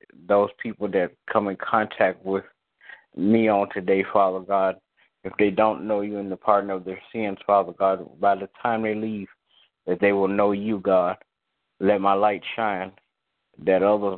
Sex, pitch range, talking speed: male, 95-105 Hz, 180 wpm